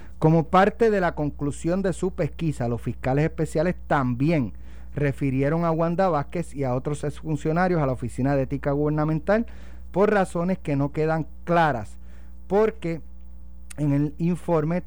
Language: Spanish